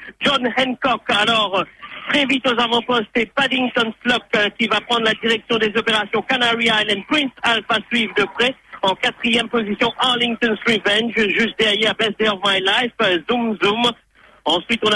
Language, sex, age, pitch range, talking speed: English, male, 50-69, 215-240 Hz, 165 wpm